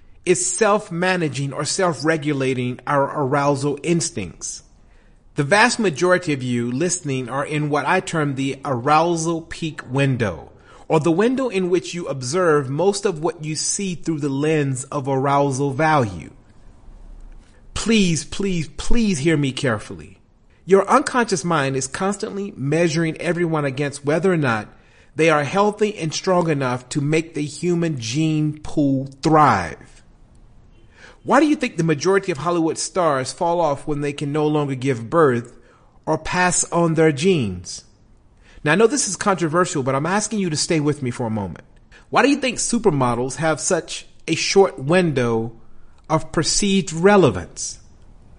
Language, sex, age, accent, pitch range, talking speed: English, male, 40-59, American, 135-175 Hz, 155 wpm